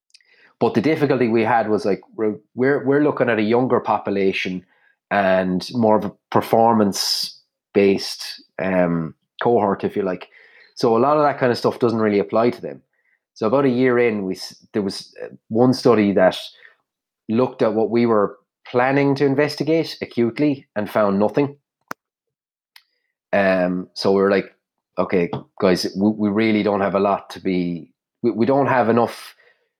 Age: 30-49